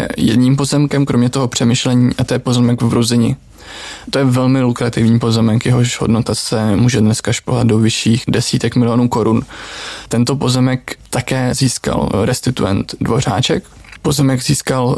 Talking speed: 140 wpm